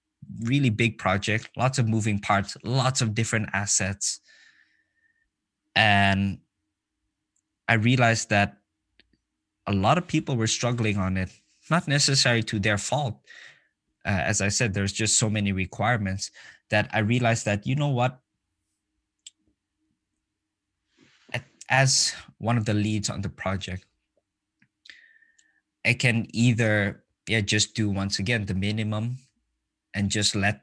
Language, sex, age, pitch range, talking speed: English, male, 20-39, 100-115 Hz, 130 wpm